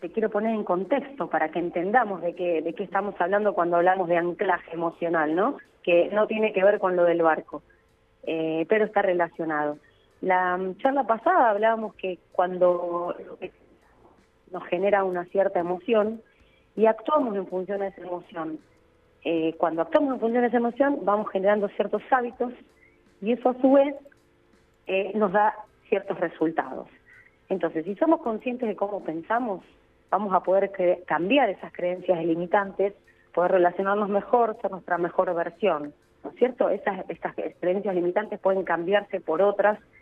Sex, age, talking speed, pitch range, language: female, 30-49, 155 wpm, 175-220 Hz, Spanish